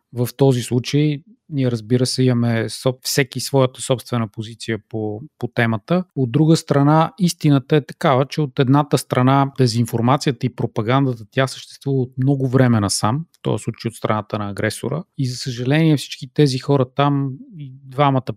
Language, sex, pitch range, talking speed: Bulgarian, male, 120-155 Hz, 160 wpm